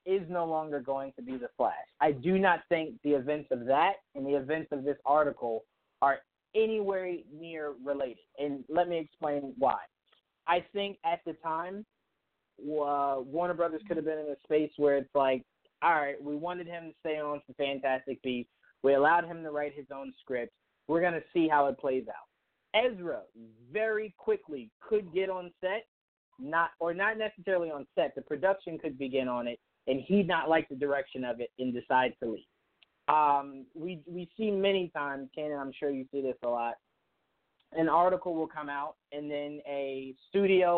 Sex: male